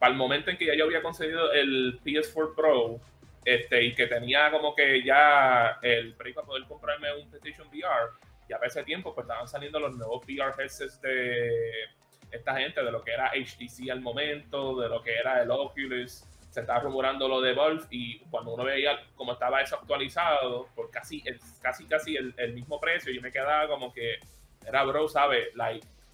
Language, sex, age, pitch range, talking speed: Spanish, male, 20-39, 120-150 Hz, 195 wpm